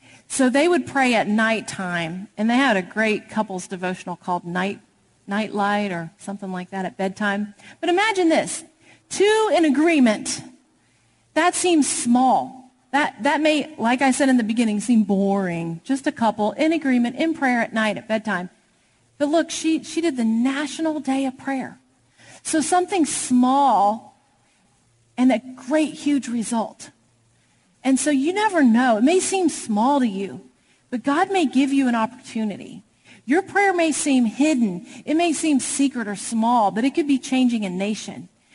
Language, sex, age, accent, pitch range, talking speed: English, female, 40-59, American, 220-300 Hz, 170 wpm